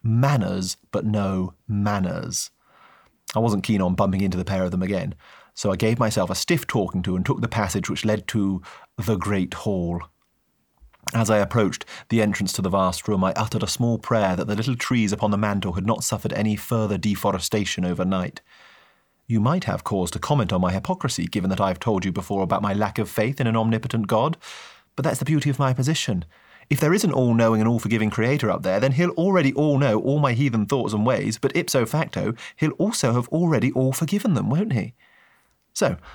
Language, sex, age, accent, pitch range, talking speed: English, male, 30-49, British, 100-130 Hz, 210 wpm